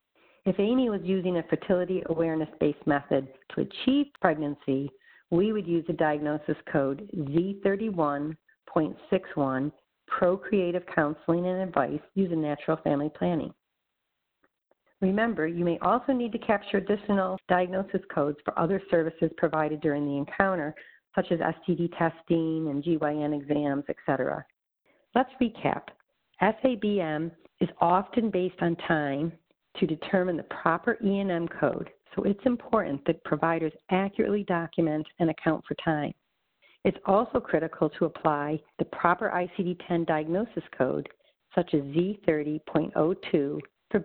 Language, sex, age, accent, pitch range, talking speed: English, female, 50-69, American, 155-190 Hz, 125 wpm